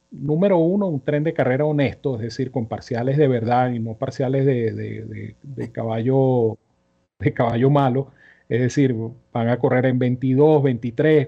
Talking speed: 170 wpm